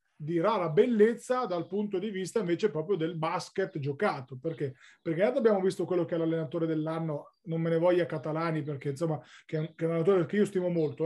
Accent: native